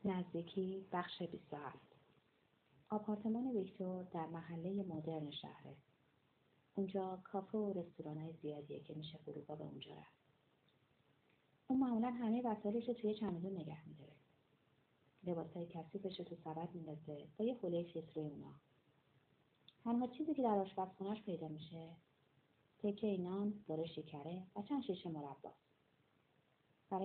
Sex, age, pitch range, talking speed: female, 30-49, 150-200 Hz, 115 wpm